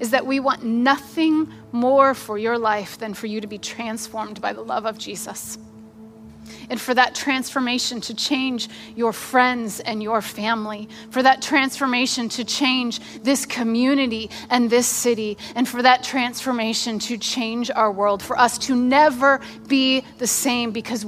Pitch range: 215-265 Hz